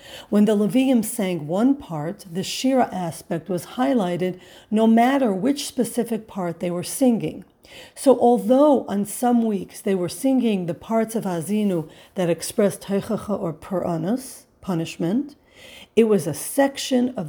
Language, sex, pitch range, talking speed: English, female, 180-240 Hz, 145 wpm